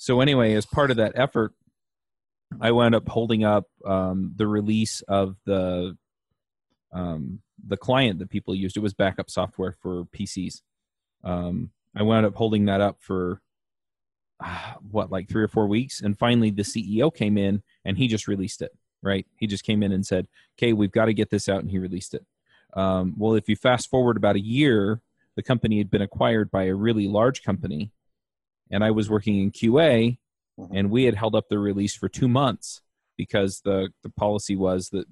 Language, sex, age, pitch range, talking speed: English, male, 30-49, 95-115 Hz, 195 wpm